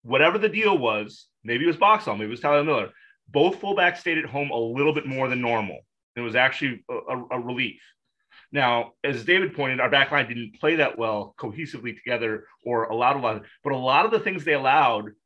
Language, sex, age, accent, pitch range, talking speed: English, male, 30-49, American, 120-160 Hz, 225 wpm